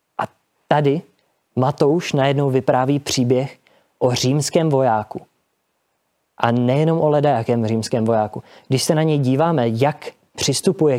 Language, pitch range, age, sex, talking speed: Czech, 120-140 Hz, 20-39, male, 115 wpm